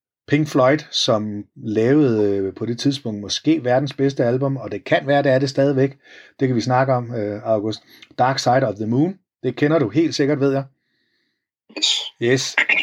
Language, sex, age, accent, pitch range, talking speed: Danish, male, 30-49, native, 110-145 Hz, 180 wpm